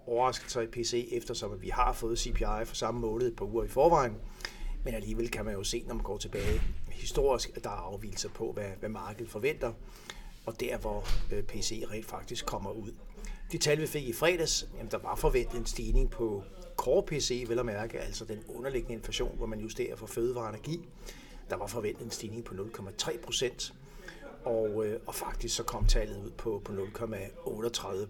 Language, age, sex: Danish, 60-79, male